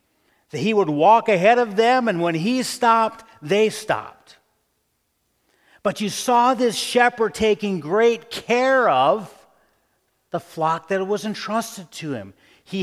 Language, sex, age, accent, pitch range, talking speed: English, male, 50-69, American, 160-225 Hz, 140 wpm